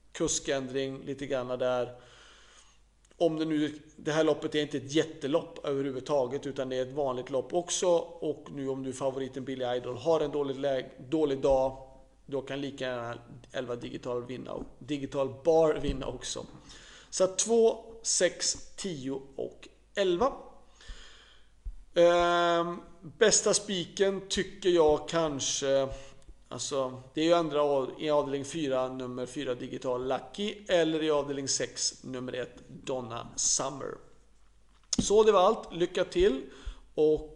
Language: Swedish